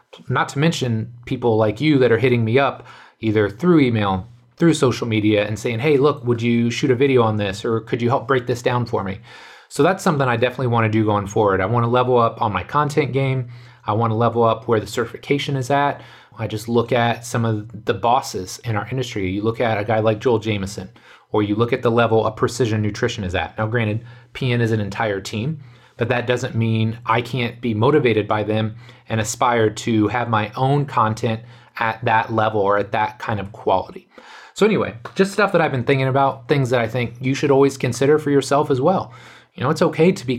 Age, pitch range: 30-49, 110-130 Hz